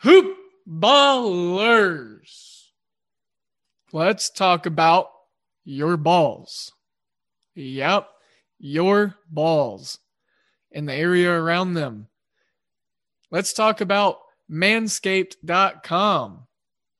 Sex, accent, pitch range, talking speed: male, American, 165-200 Hz, 65 wpm